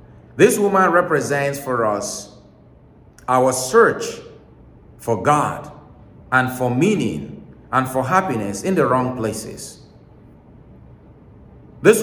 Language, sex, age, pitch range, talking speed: English, male, 40-59, 110-150 Hz, 100 wpm